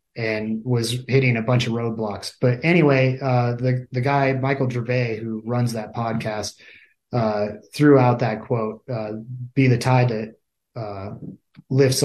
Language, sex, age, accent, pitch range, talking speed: English, male, 30-49, American, 110-130 Hz, 155 wpm